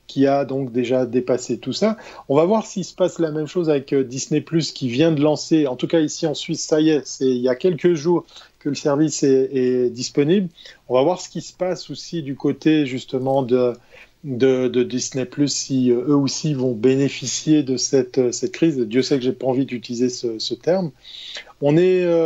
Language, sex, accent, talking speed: French, male, French, 215 wpm